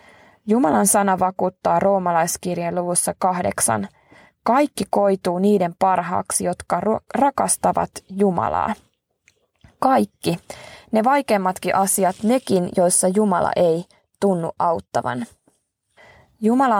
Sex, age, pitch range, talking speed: female, 20-39, 180-205 Hz, 85 wpm